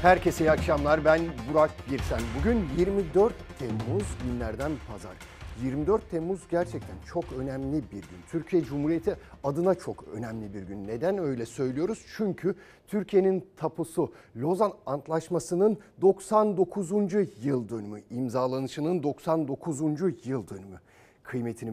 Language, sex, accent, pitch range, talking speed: Turkish, male, native, 115-170 Hz, 115 wpm